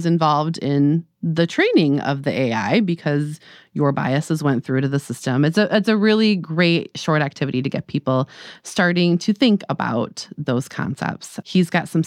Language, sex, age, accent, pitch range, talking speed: English, female, 30-49, American, 145-175 Hz, 175 wpm